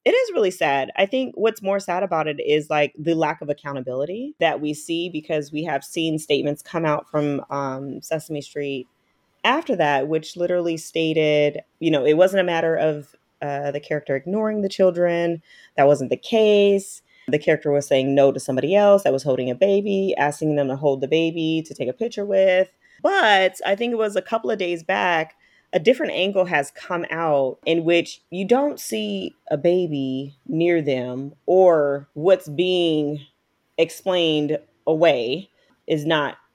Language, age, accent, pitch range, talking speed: English, 30-49, American, 145-190 Hz, 180 wpm